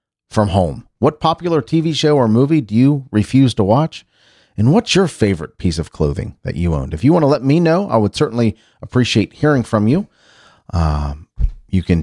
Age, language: 40-59, English